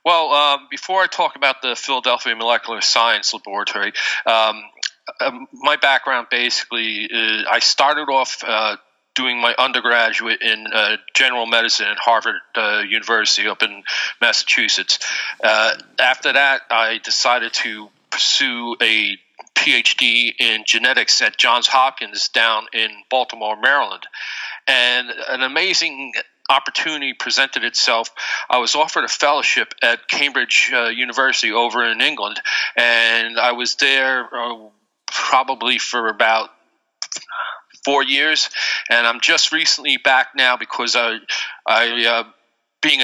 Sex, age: male, 40-59